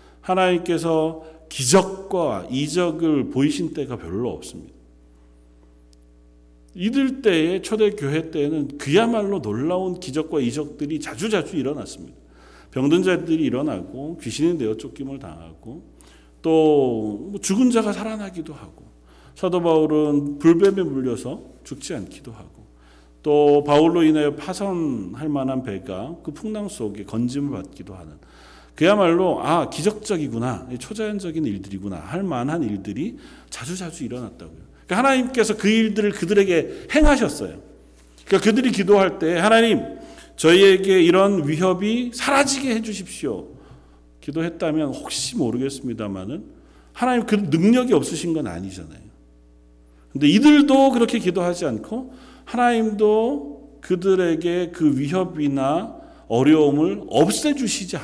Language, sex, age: Korean, male, 40-59